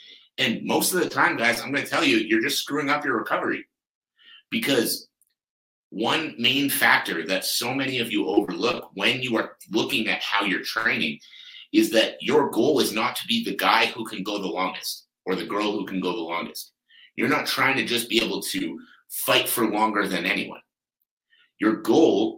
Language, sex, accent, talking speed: English, male, American, 195 wpm